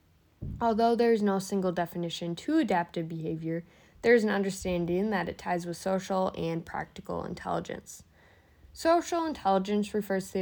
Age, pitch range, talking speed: 10-29, 170-205 Hz, 150 wpm